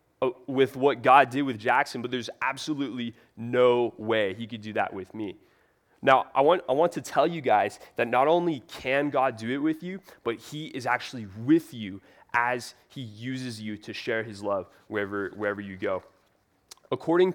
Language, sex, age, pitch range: English, male, 20-39, 115-145 Hz